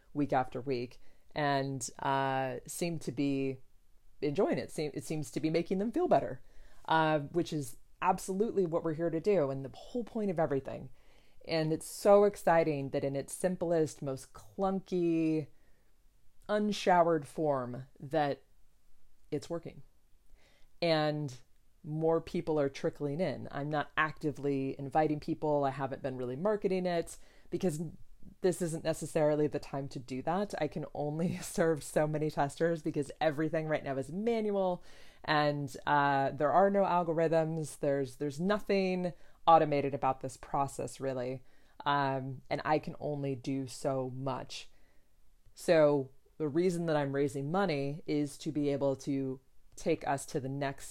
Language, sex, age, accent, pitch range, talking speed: English, female, 30-49, American, 140-165 Hz, 150 wpm